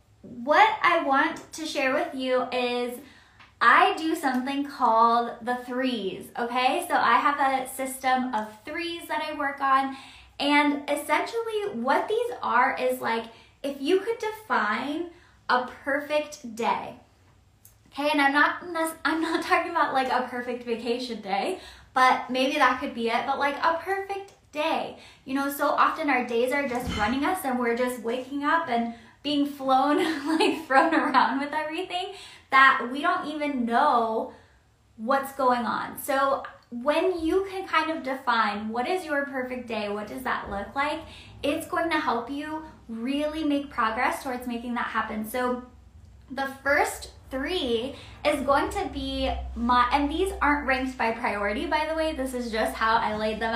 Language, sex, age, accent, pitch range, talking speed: English, female, 20-39, American, 245-310 Hz, 165 wpm